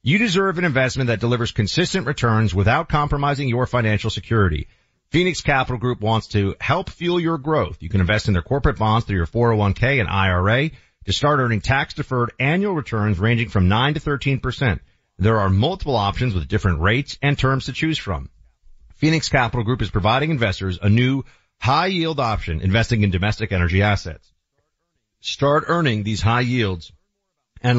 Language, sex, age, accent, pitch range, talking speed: English, male, 40-59, American, 100-140 Hz, 165 wpm